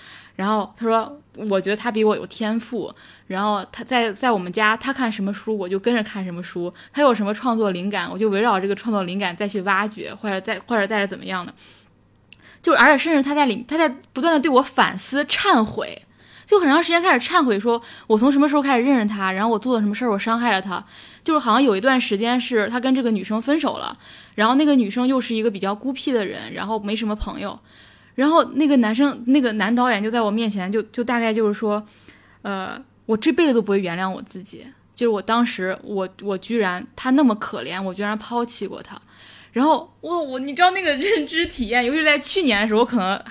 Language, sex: Chinese, female